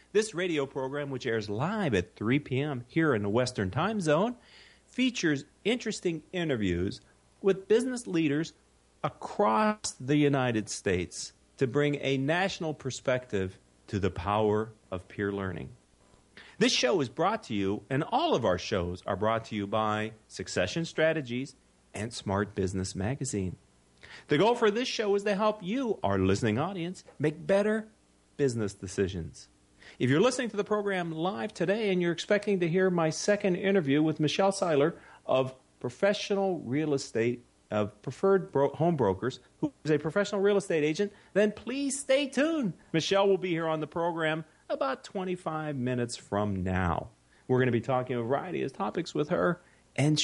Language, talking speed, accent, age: English, 160 wpm, American, 40-59